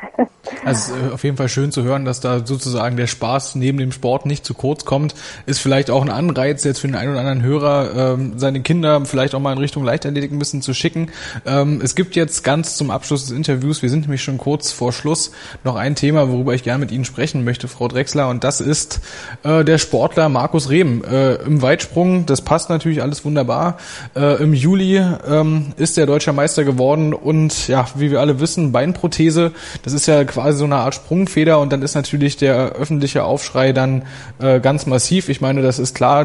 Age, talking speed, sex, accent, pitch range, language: 20-39, 210 wpm, male, German, 130-150 Hz, German